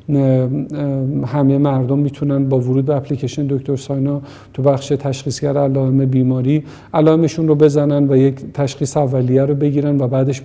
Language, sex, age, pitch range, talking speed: Persian, male, 50-69, 140-155 Hz, 145 wpm